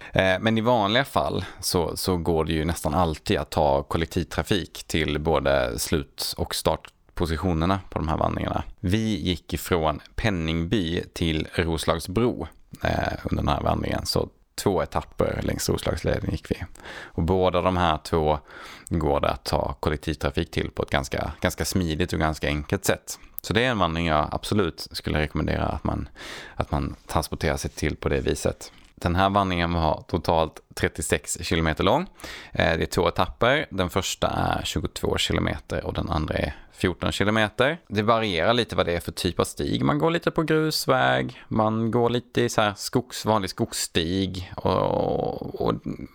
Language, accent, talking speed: Swedish, Norwegian, 165 wpm